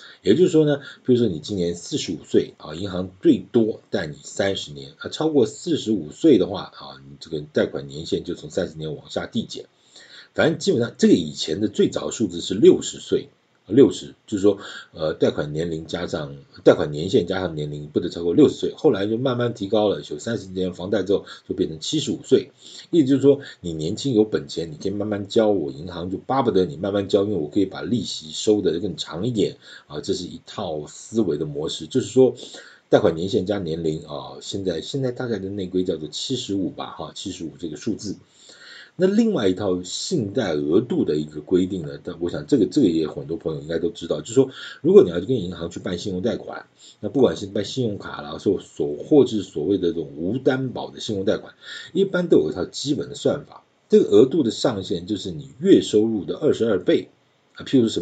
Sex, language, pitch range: male, Chinese, 85-125 Hz